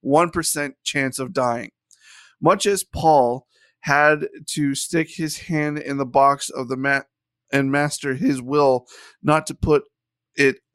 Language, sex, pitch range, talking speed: English, male, 130-160 Hz, 140 wpm